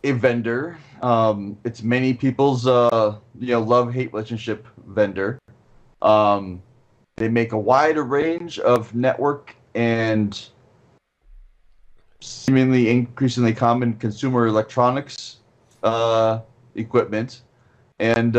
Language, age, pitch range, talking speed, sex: English, 30-49, 105-120 Hz, 100 wpm, male